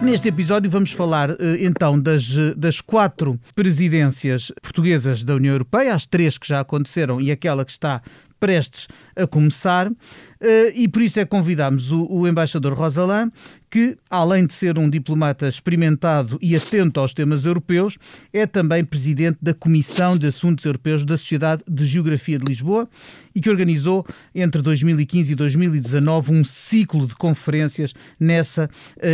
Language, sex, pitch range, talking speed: Portuguese, male, 150-195 Hz, 150 wpm